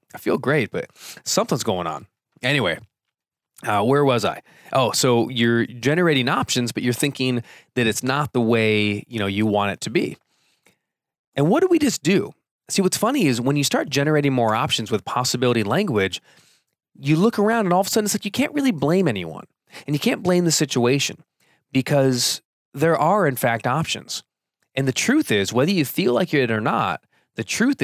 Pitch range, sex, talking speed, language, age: 115-160 Hz, male, 195 wpm, English, 20-39